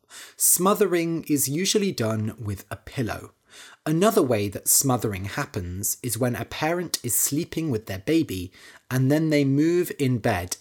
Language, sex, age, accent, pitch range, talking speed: English, male, 30-49, British, 105-155 Hz, 155 wpm